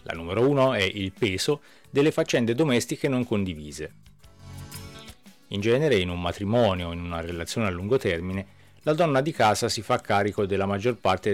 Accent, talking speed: native, 175 wpm